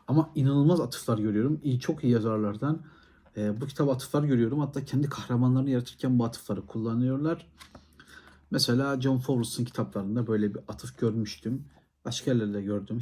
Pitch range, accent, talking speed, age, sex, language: 100-120 Hz, native, 140 wpm, 60-79, male, Turkish